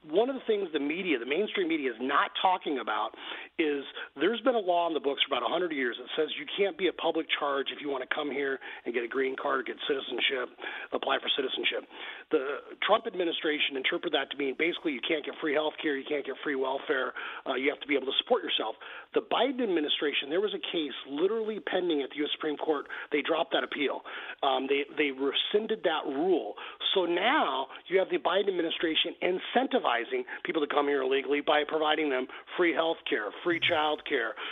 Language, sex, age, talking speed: English, male, 40-59, 215 wpm